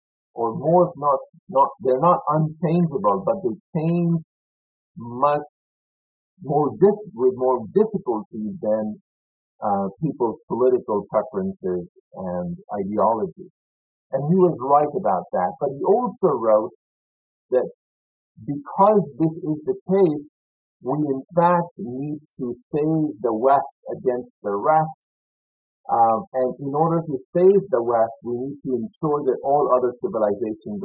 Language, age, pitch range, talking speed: Malayalam, 50-69, 115-180 Hz, 130 wpm